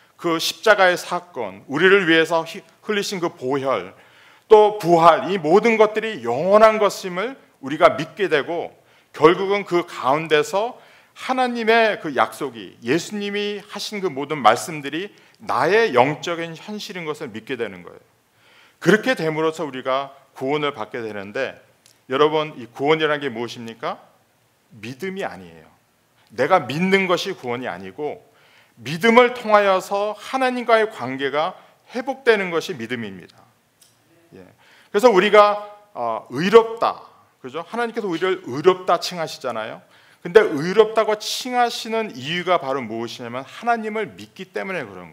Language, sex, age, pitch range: Korean, male, 40-59, 135-215 Hz